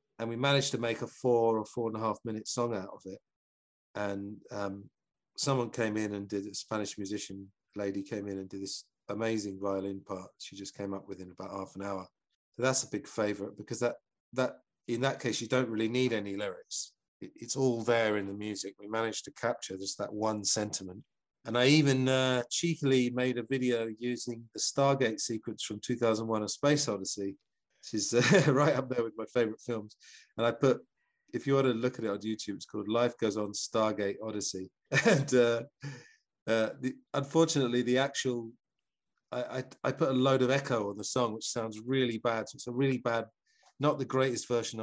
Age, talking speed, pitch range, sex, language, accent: 40-59, 205 wpm, 105-130 Hz, male, English, British